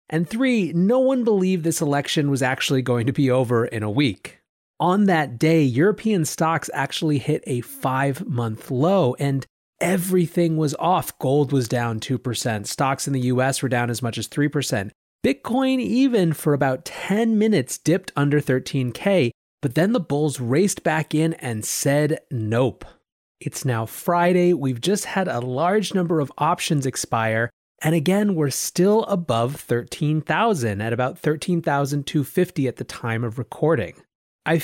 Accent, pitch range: American, 125-175 Hz